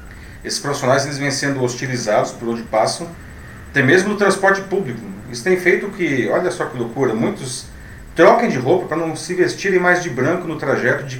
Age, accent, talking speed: 40-59, Brazilian, 195 wpm